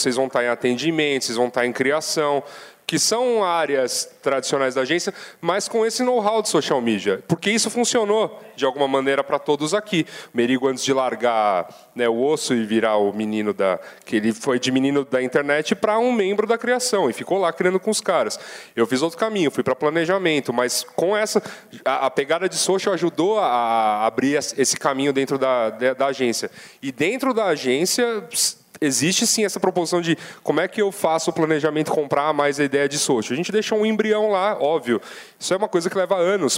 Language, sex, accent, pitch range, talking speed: Portuguese, male, Brazilian, 130-200 Hz, 205 wpm